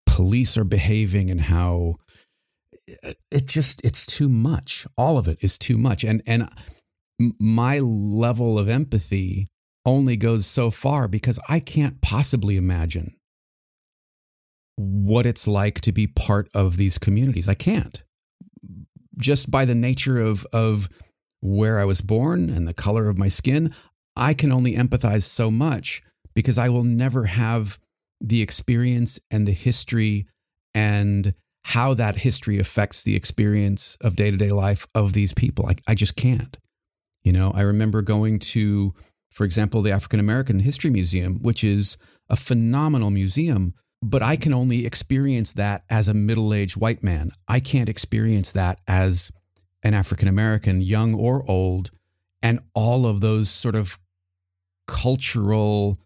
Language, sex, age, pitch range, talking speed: English, male, 40-59, 95-120 Hz, 150 wpm